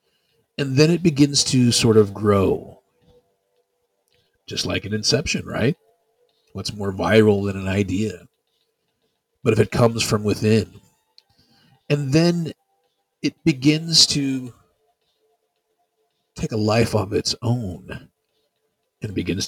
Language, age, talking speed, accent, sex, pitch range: English, 40-59, 115 wpm, American, male, 100-150 Hz